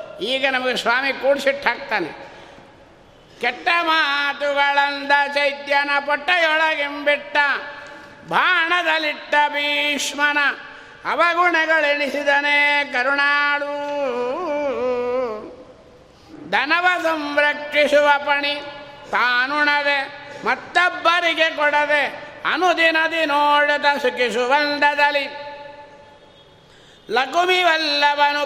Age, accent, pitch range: 60-79, native, 280-295 Hz